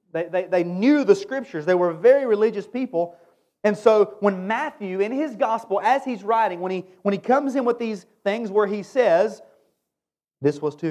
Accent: American